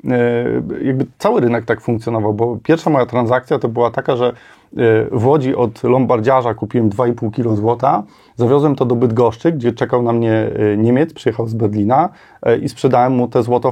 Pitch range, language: 115-135 Hz, Polish